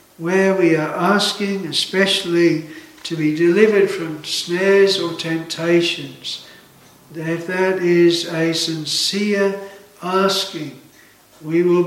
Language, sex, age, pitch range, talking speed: English, male, 60-79, 165-195 Hz, 100 wpm